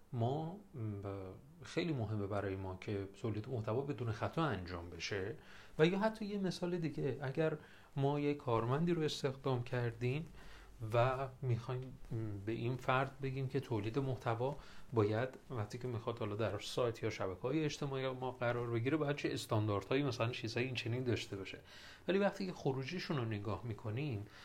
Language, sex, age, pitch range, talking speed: Persian, male, 40-59, 110-145 Hz, 155 wpm